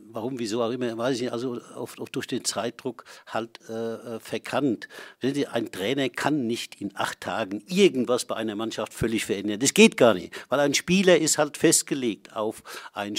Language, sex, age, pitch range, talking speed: German, male, 60-79, 115-150 Hz, 195 wpm